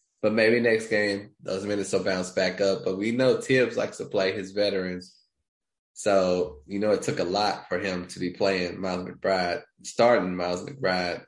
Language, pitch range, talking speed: English, 95-120 Hz, 190 wpm